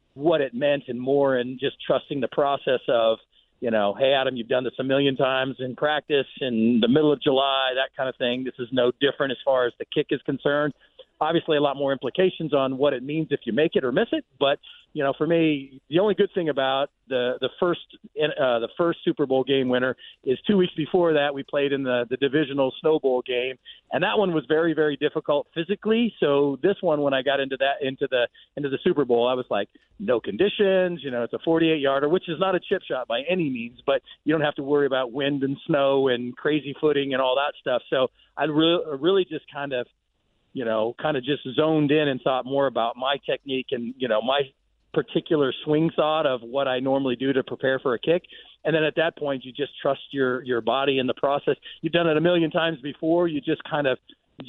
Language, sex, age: English, male, 40-59